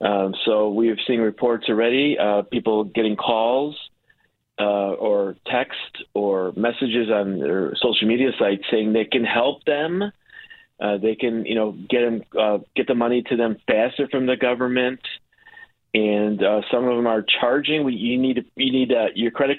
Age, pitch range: 40-59, 110-130 Hz